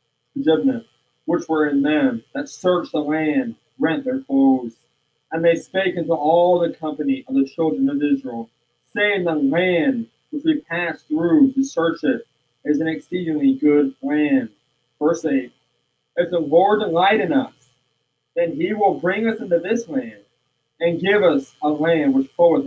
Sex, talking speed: male, 165 wpm